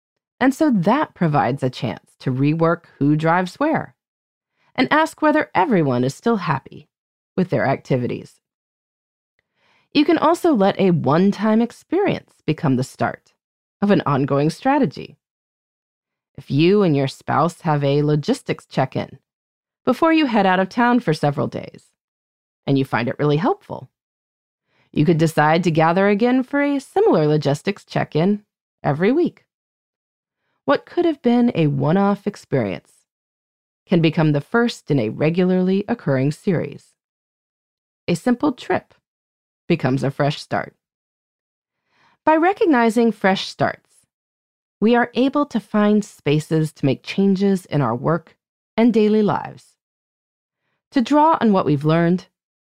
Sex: female